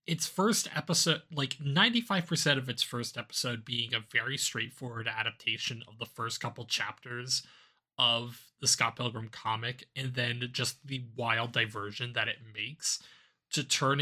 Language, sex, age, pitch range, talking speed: English, male, 20-39, 115-145 Hz, 150 wpm